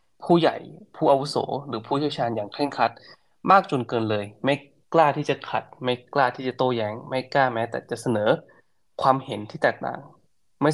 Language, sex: Thai, male